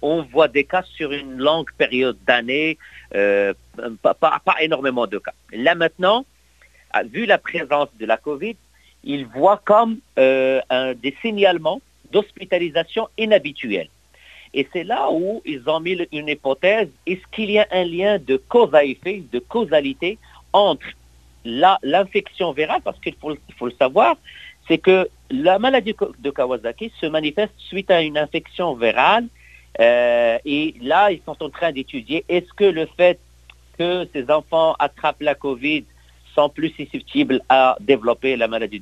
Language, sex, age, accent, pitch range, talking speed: French, male, 50-69, French, 125-195 Hz, 155 wpm